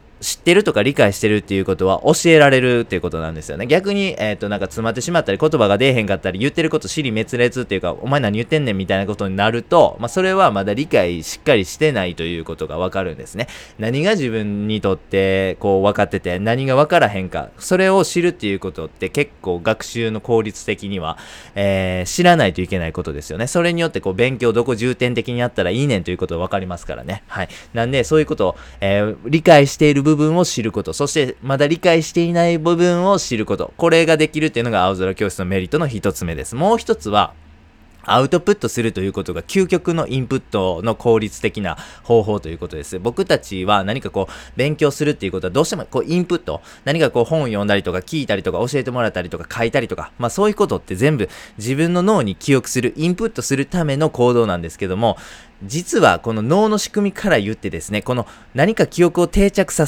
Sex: male